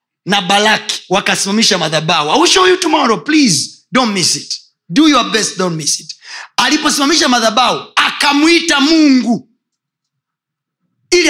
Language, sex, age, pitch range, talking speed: Swahili, male, 30-49, 195-280 Hz, 115 wpm